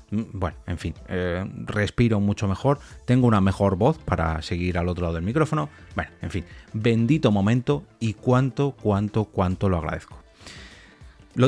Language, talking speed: Spanish, 155 wpm